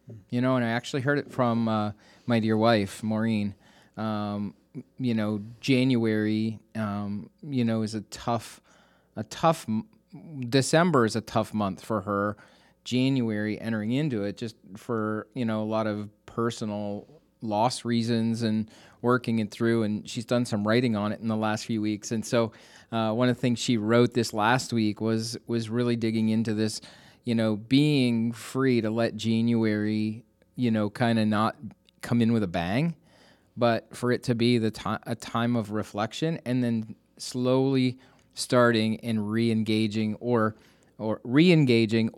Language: English